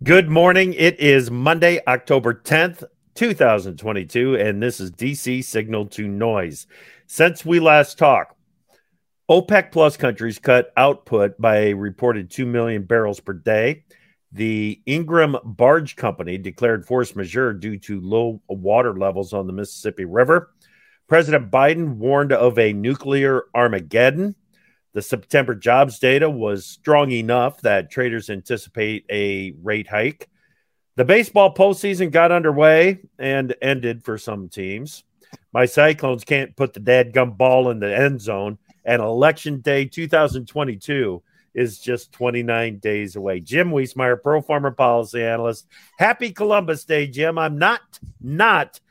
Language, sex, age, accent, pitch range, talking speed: English, male, 50-69, American, 110-155 Hz, 135 wpm